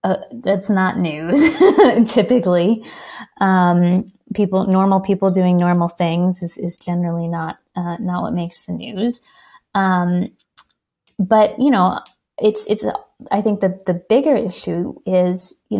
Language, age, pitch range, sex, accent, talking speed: English, 20-39, 175-220 Hz, female, American, 135 wpm